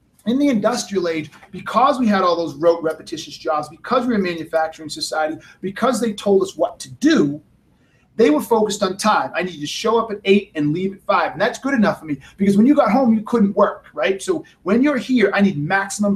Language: English